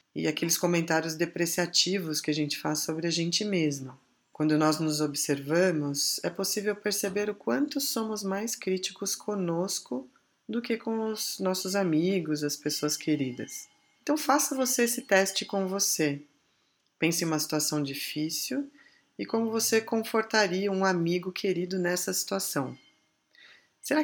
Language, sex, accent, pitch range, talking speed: Portuguese, female, Brazilian, 155-215 Hz, 140 wpm